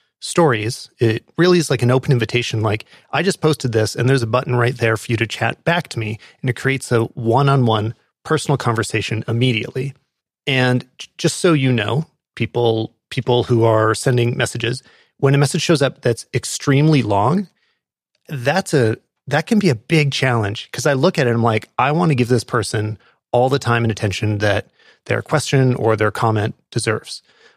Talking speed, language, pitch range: 190 wpm, English, 115-140 Hz